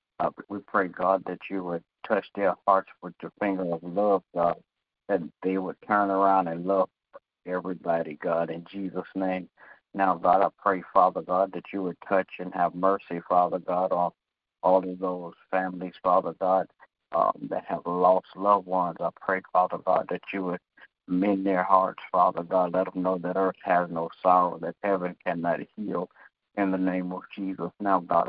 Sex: male